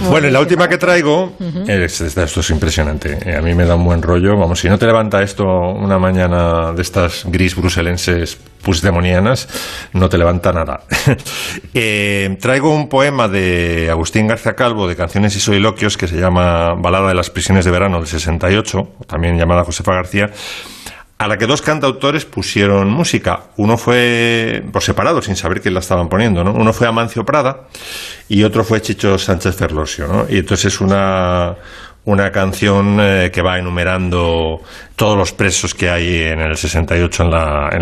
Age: 40-59